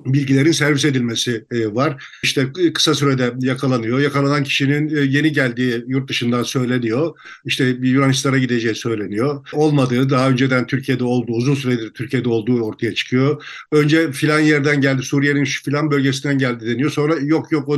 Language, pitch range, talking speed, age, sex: Turkish, 130-155 Hz, 150 wpm, 50-69, male